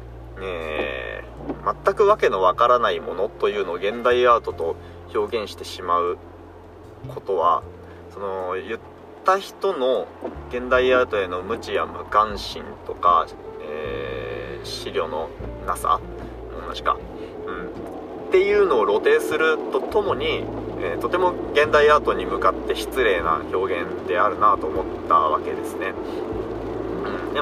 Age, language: 20-39, Japanese